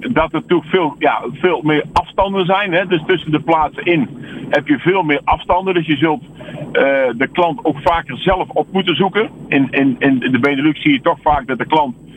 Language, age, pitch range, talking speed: Dutch, 50-69, 140-170 Hz, 200 wpm